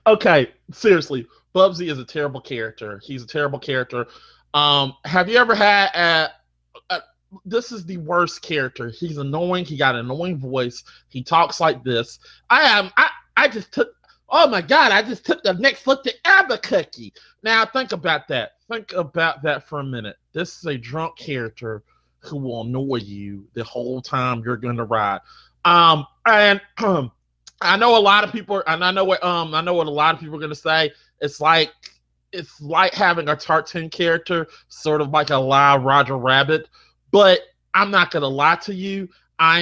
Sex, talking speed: male, 190 wpm